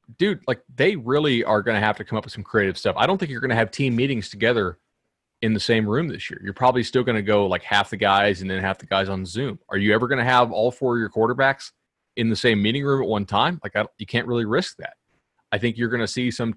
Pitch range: 100-120 Hz